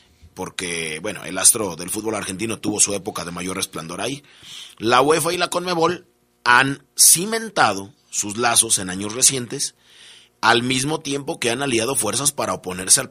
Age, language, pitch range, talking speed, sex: 30-49, Spanish, 90-120 Hz, 165 wpm, male